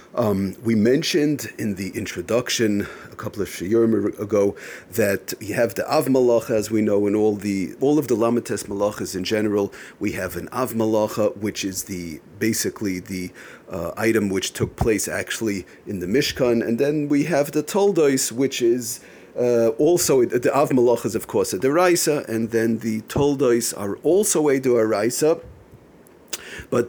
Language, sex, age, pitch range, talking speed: English, male, 40-59, 105-135 Hz, 165 wpm